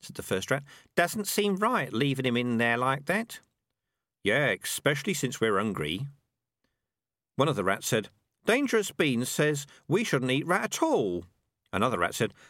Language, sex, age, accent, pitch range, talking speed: English, male, 50-69, British, 115-175 Hz, 170 wpm